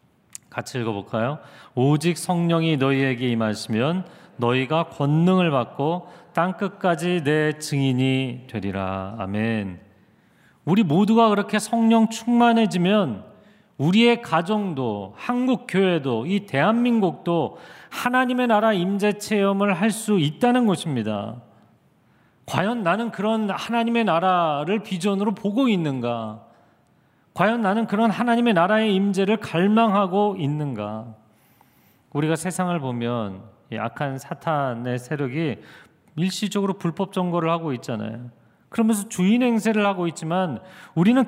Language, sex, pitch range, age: Korean, male, 135-210 Hz, 40-59